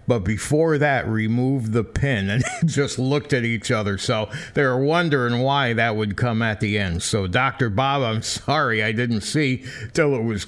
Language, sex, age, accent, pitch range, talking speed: English, male, 60-79, American, 110-150 Hz, 190 wpm